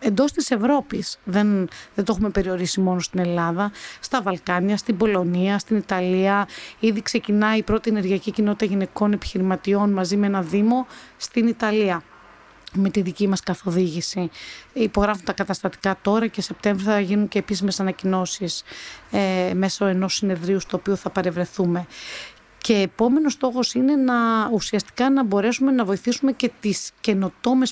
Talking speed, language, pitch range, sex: 145 wpm, Greek, 185-220 Hz, female